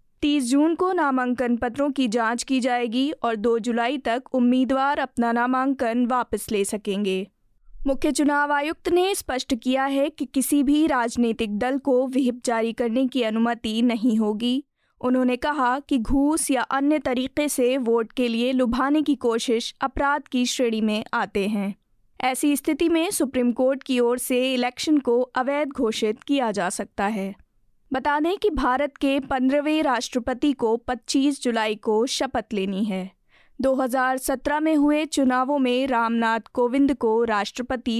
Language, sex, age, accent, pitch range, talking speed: Hindi, female, 20-39, native, 235-280 Hz, 155 wpm